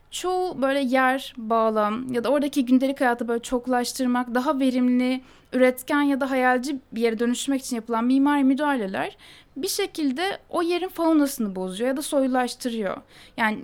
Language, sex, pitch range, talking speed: Turkish, female, 245-305 Hz, 150 wpm